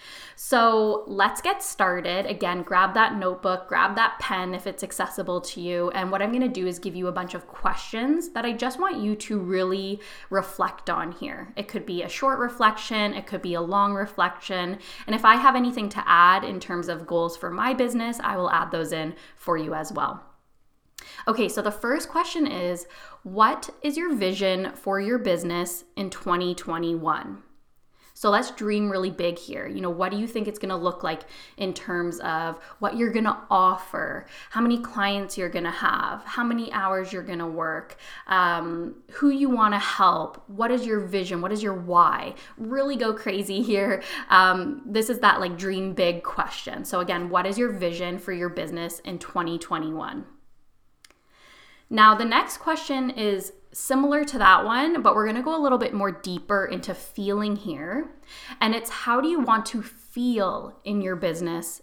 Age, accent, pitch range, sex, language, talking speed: 10-29, American, 180-235 Hz, female, English, 190 wpm